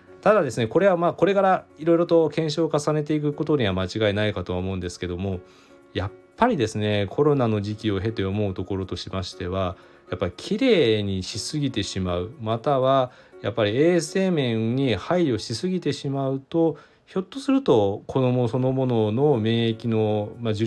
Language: Japanese